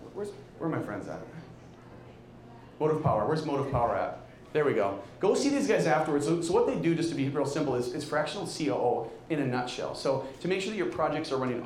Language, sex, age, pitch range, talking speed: English, male, 30-49, 110-145 Hz, 235 wpm